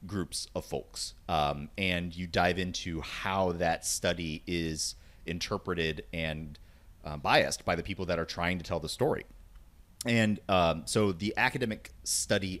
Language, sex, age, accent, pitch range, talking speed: English, male, 30-49, American, 85-105 Hz, 150 wpm